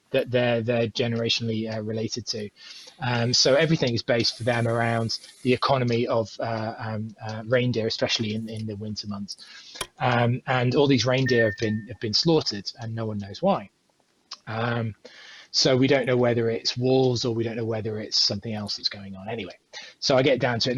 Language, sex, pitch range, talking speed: English, male, 110-125 Hz, 200 wpm